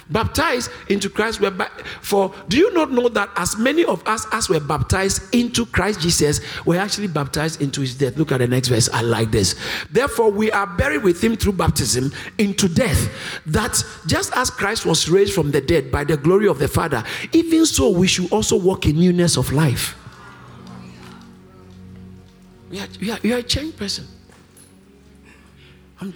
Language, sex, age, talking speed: English, male, 50-69, 180 wpm